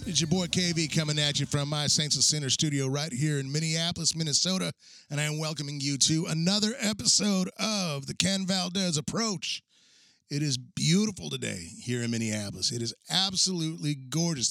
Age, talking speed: 30-49, 175 wpm